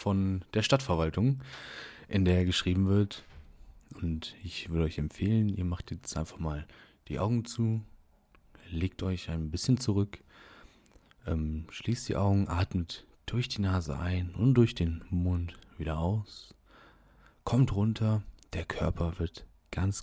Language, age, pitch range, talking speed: German, 30-49, 80-105 Hz, 140 wpm